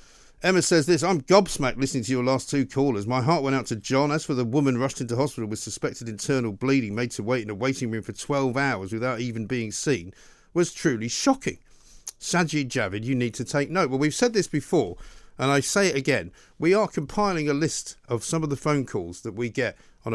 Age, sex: 50-69, male